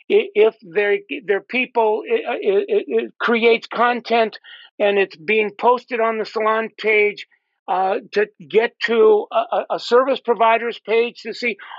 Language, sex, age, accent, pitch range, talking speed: English, male, 50-69, American, 210-305 Hz, 145 wpm